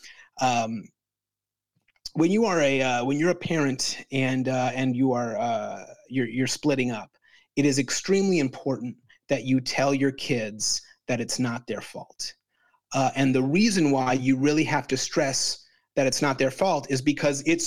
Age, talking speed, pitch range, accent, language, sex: 30-49, 175 wpm, 135-185 Hz, American, English, male